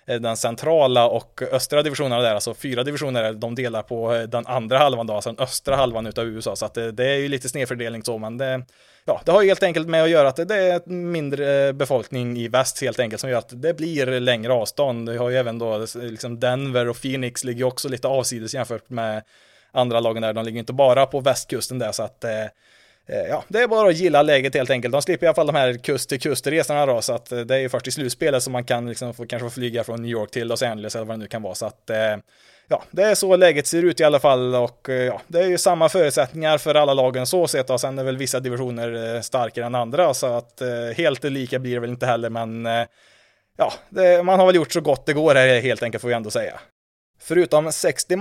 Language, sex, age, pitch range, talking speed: Swedish, male, 20-39, 120-150 Hz, 245 wpm